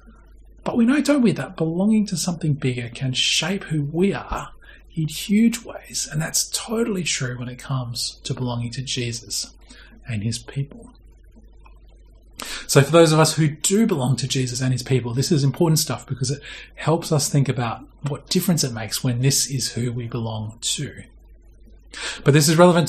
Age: 30-49